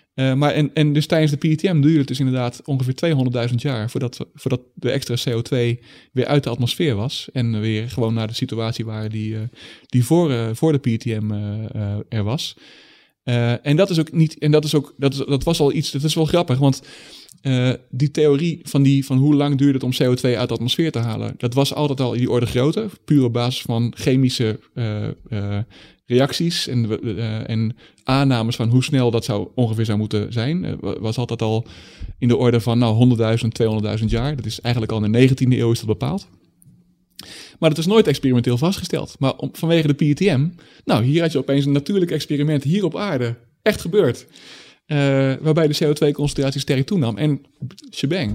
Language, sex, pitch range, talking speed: Dutch, male, 115-150 Hz, 210 wpm